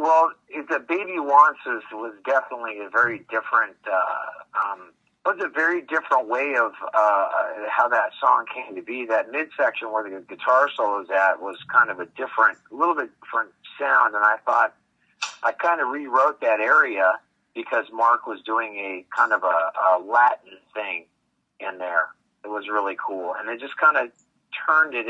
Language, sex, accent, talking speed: English, male, American, 180 wpm